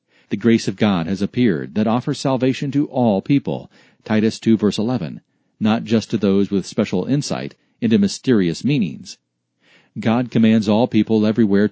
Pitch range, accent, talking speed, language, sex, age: 100-125 Hz, American, 160 wpm, English, male, 40-59